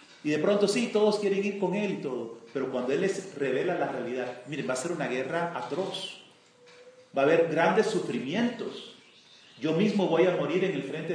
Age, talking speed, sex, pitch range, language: 40-59, 205 wpm, male, 135-200 Hz, Spanish